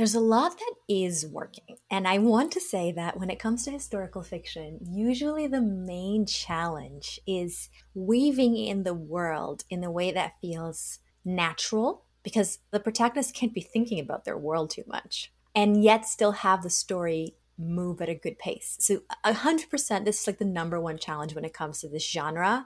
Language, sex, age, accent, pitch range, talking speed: English, female, 30-49, American, 175-235 Hz, 190 wpm